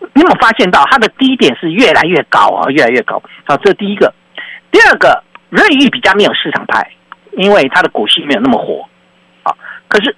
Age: 50-69